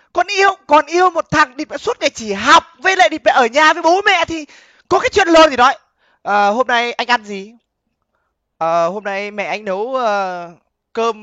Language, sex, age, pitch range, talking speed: Vietnamese, male, 20-39, 235-360 Hz, 225 wpm